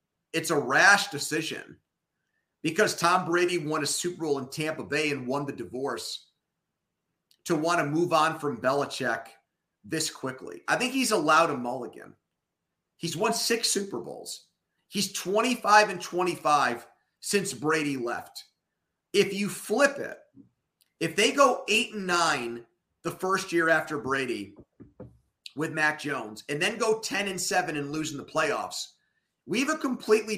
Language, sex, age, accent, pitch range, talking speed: English, male, 30-49, American, 140-195 Hz, 155 wpm